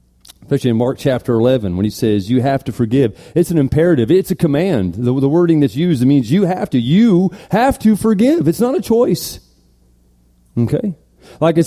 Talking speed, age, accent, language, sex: 200 wpm, 40-59, American, English, male